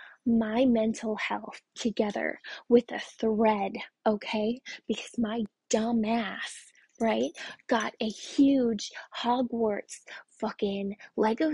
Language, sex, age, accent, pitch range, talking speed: English, female, 20-39, American, 210-255 Hz, 100 wpm